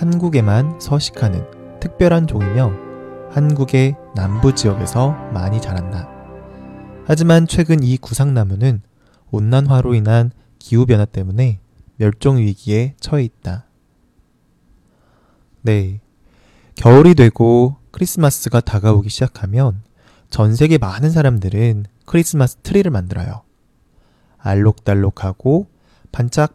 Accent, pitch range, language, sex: Korean, 105-140 Hz, Chinese, male